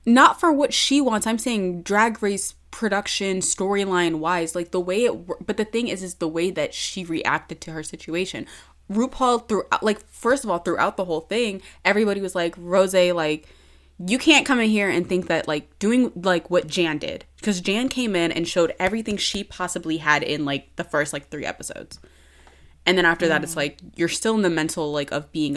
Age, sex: 20-39, female